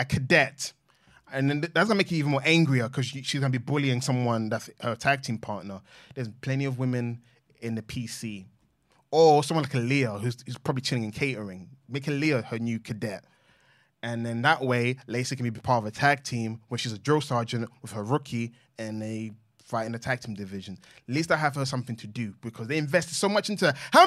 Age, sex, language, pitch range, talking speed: 20-39, male, English, 115-160 Hz, 220 wpm